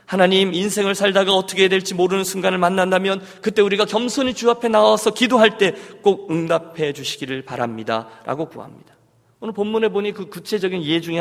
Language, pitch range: Korean, 155-220 Hz